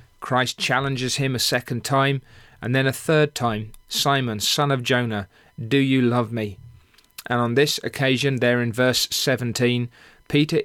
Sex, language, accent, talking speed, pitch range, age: male, English, British, 160 wpm, 115-135 Hz, 40-59